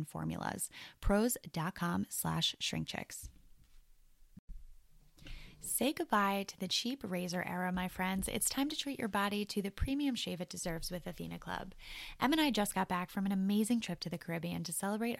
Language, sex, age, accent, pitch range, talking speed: English, female, 10-29, American, 175-220 Hz, 175 wpm